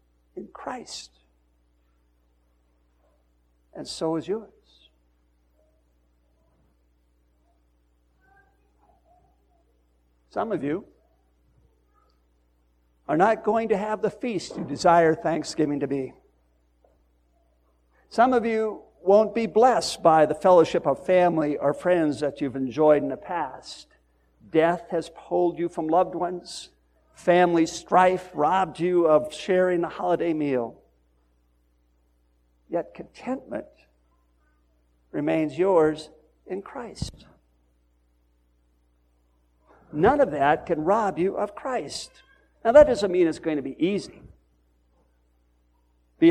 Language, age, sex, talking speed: English, 60-79, male, 105 wpm